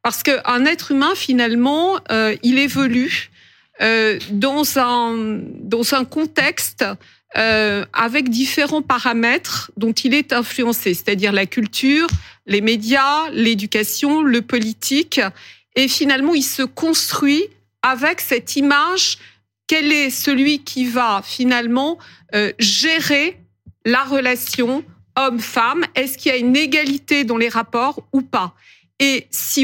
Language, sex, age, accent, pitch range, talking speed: French, female, 50-69, French, 225-285 Hz, 125 wpm